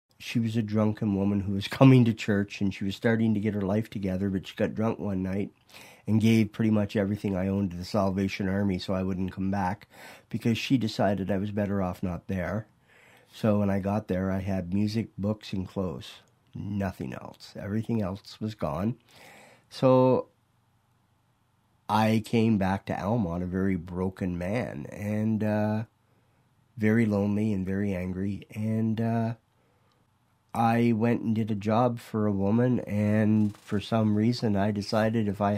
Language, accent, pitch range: English, American, 100-115 Hz